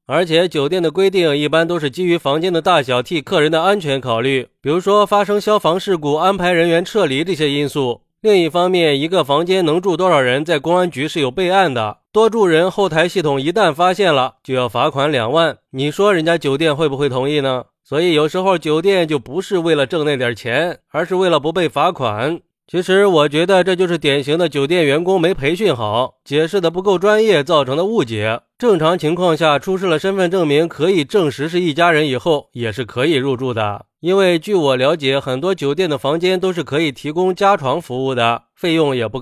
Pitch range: 140-185 Hz